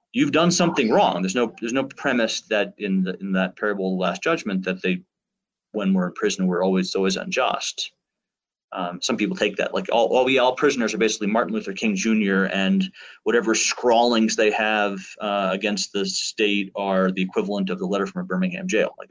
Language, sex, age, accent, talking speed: English, male, 30-49, American, 205 wpm